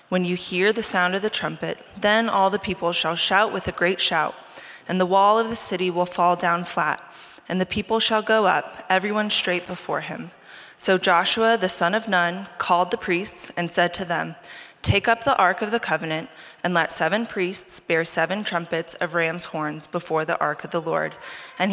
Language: English